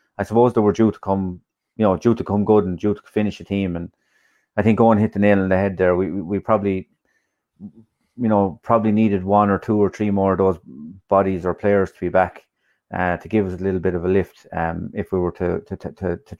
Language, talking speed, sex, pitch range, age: English, 260 wpm, male, 90-105 Hz, 30-49